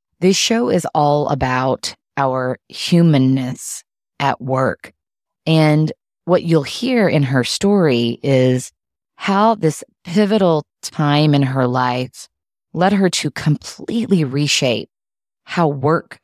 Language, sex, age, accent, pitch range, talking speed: English, female, 20-39, American, 130-170 Hz, 115 wpm